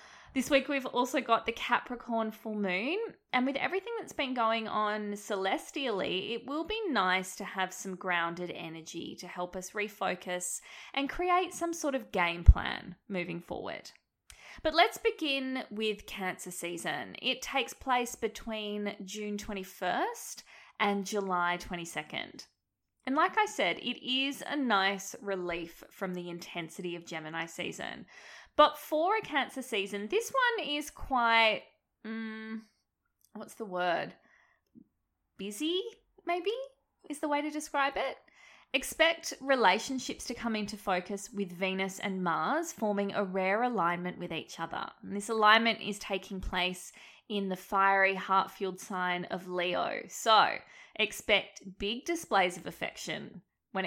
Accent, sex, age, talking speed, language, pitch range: Australian, female, 20-39, 140 wpm, English, 185-275 Hz